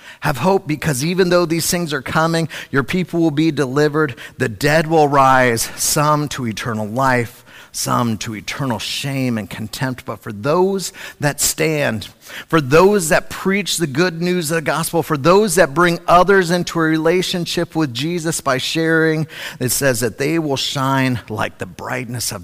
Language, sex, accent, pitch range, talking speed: English, male, American, 130-180 Hz, 175 wpm